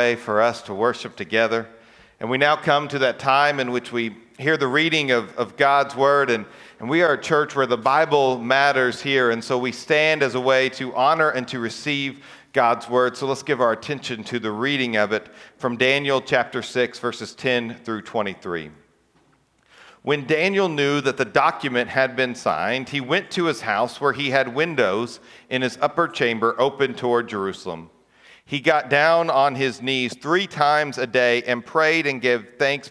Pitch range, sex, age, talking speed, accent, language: 120-150 Hz, male, 40-59, 190 wpm, American, English